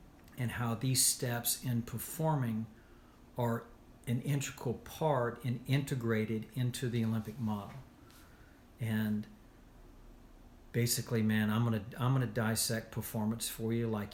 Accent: American